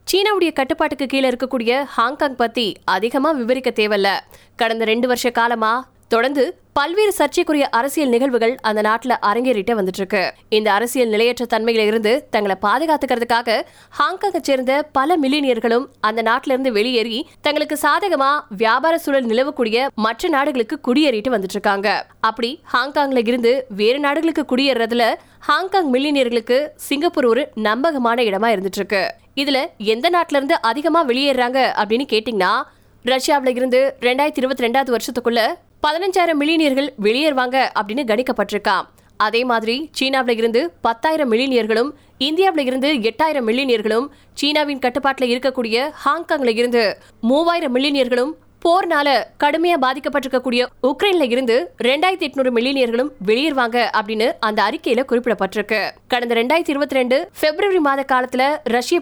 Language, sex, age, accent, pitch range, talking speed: Tamil, female, 20-39, native, 230-290 Hz, 90 wpm